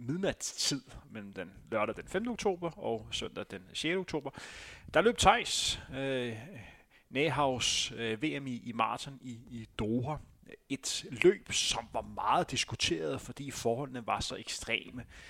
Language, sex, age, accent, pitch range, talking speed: Danish, male, 30-49, native, 115-140 Hz, 140 wpm